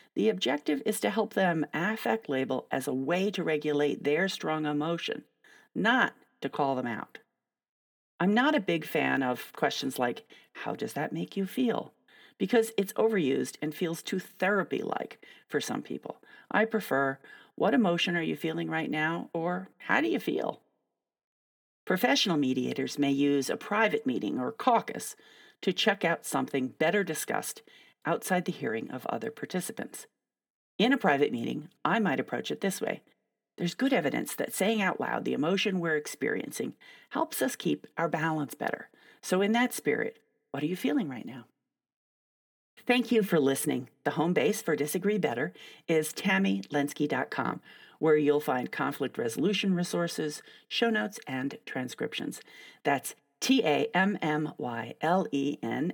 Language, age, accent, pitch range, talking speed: English, 40-59, American, 145-215 Hz, 150 wpm